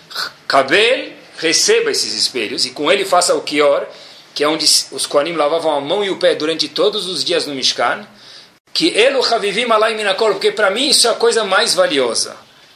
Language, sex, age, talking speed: Portuguese, male, 40-59, 195 wpm